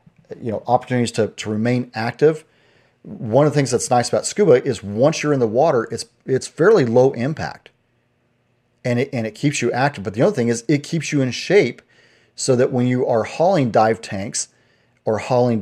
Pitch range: 110-130 Hz